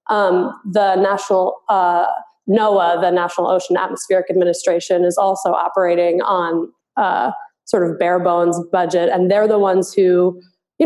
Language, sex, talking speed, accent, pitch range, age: English, female, 145 wpm, American, 180-215 Hz, 20-39